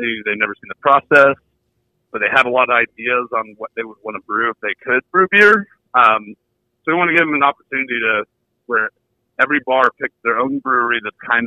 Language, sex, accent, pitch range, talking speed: English, male, American, 110-135 Hz, 225 wpm